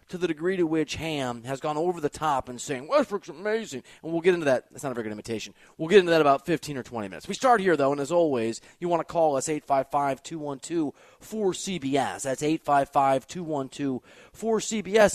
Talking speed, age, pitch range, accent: 200 wpm, 30-49, 135-205 Hz, American